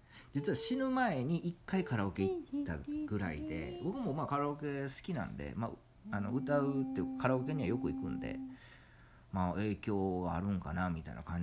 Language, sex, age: Japanese, male, 50-69